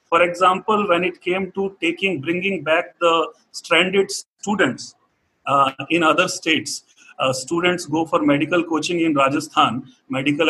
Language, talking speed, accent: English, 145 wpm, Indian